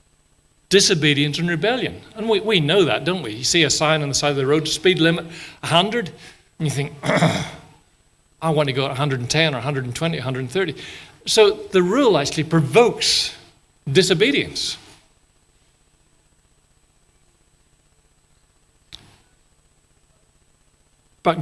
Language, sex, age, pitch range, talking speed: English, male, 50-69, 145-185 Hz, 120 wpm